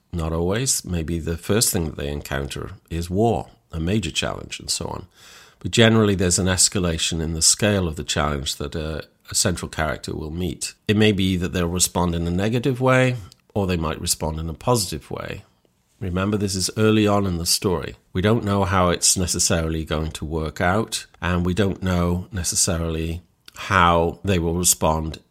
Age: 50-69